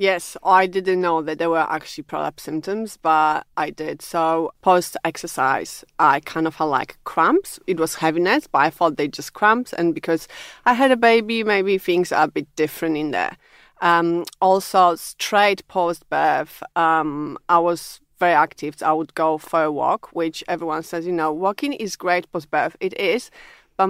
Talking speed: 175 wpm